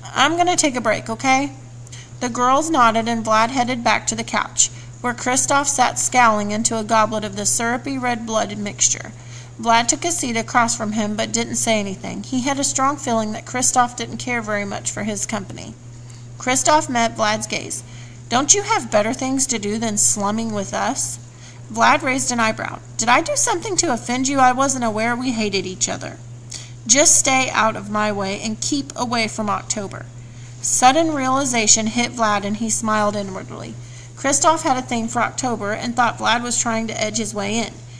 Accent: American